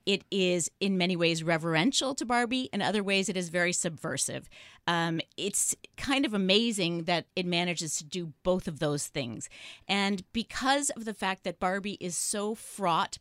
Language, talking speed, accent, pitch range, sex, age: English, 175 wpm, American, 180-235 Hz, female, 30-49